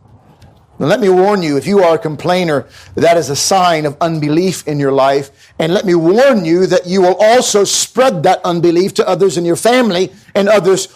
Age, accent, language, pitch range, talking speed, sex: 50-69, American, English, 160-220 Hz, 205 wpm, male